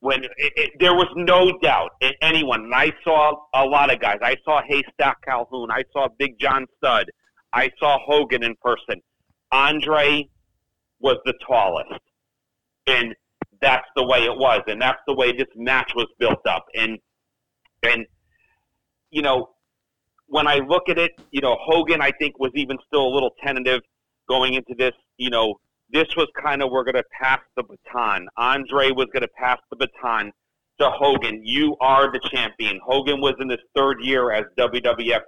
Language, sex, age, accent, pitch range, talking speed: English, male, 40-59, American, 115-140 Hz, 180 wpm